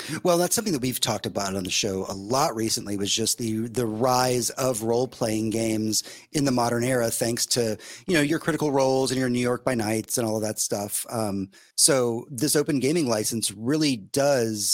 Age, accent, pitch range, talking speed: 30-49, American, 115-150 Hz, 210 wpm